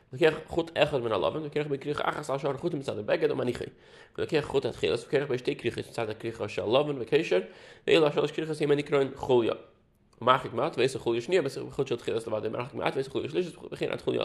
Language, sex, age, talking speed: English, male, 30-49, 65 wpm